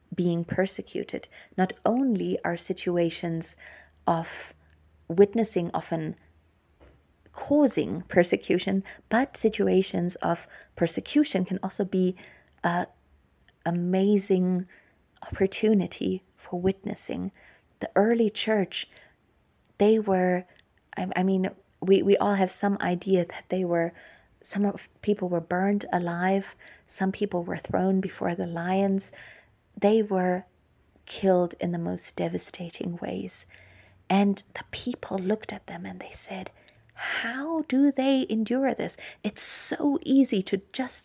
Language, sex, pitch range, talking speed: English, female, 175-215 Hz, 115 wpm